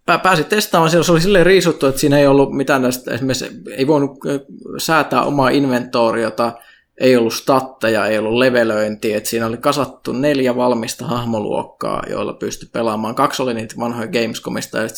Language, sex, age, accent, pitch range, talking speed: Finnish, male, 20-39, native, 115-140 Hz, 165 wpm